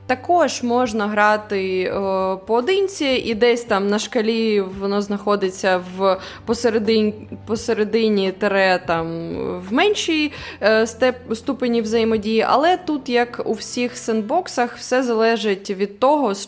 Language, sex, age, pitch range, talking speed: Ukrainian, female, 20-39, 195-240 Hz, 125 wpm